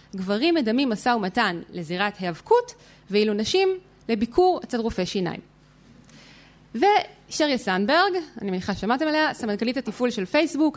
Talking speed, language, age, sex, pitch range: 125 wpm, Hebrew, 20-39, female, 215-335 Hz